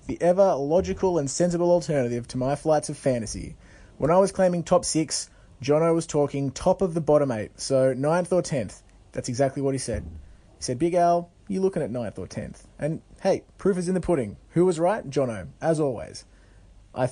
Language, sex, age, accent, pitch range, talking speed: English, male, 20-39, Australian, 120-165 Hz, 200 wpm